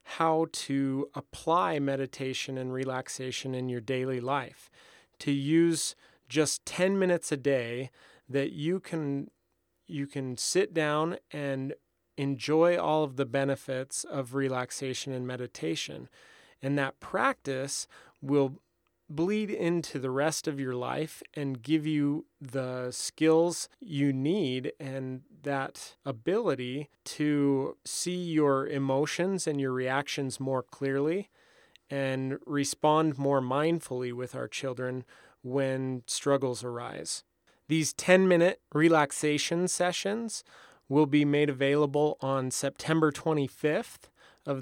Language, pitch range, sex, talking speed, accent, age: English, 135-160 Hz, male, 115 wpm, American, 30-49